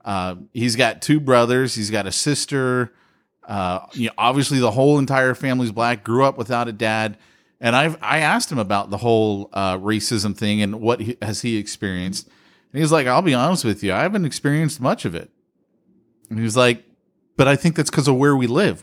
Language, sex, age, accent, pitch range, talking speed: English, male, 40-59, American, 110-155 Hz, 215 wpm